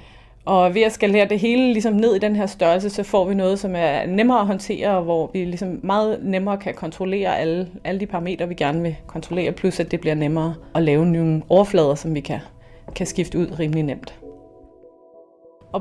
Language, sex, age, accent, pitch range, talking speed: Danish, female, 30-49, native, 170-215 Hz, 205 wpm